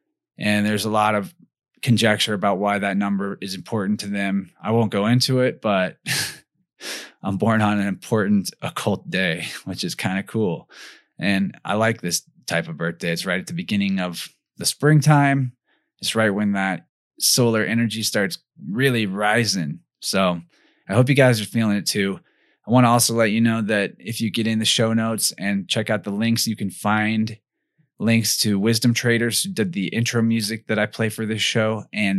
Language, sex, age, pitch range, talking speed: English, male, 20-39, 100-125 Hz, 195 wpm